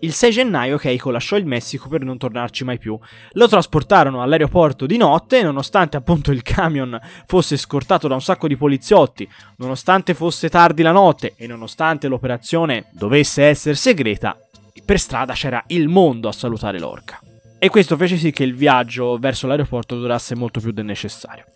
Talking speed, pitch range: 170 wpm, 120-165 Hz